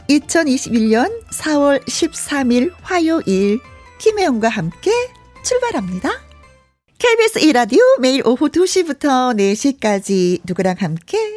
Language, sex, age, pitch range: Korean, female, 40-59, 185-285 Hz